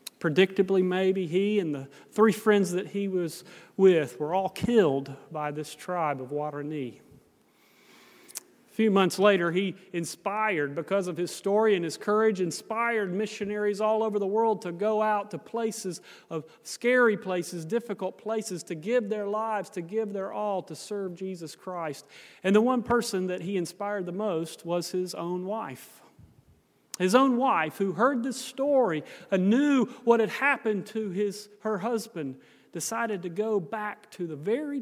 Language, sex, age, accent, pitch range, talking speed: English, male, 40-59, American, 175-215 Hz, 165 wpm